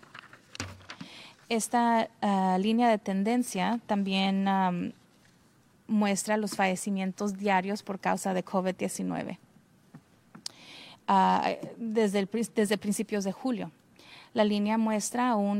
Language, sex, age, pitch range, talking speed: English, female, 30-49, 185-215 Hz, 90 wpm